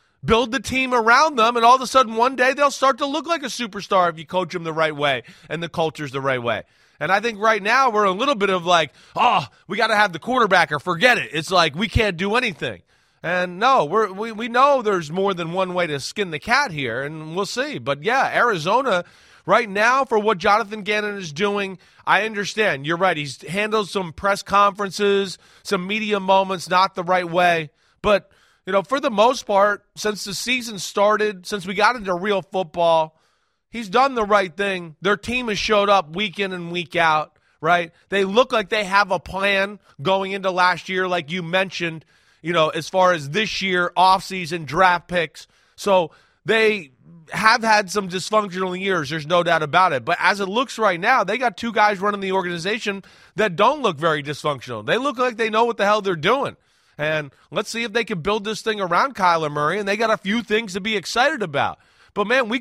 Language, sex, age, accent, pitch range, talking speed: English, male, 30-49, American, 175-220 Hz, 215 wpm